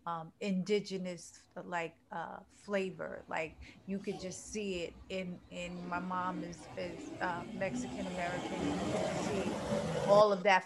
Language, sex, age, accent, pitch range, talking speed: English, female, 30-49, American, 180-205 Hz, 135 wpm